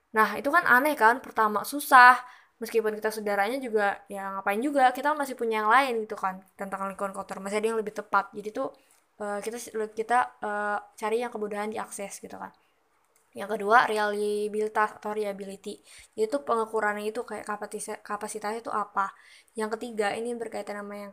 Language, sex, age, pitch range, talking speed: Indonesian, female, 20-39, 210-240 Hz, 165 wpm